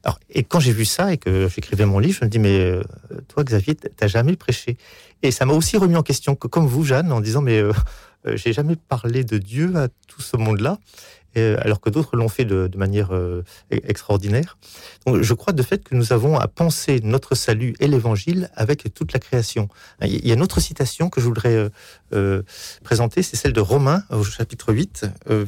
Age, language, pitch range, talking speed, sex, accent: 40-59, French, 105-140 Hz, 220 wpm, male, French